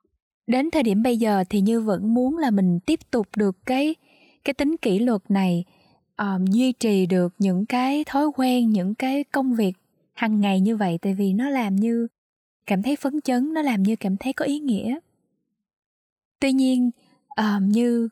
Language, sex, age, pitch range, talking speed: Vietnamese, female, 10-29, 195-255 Hz, 190 wpm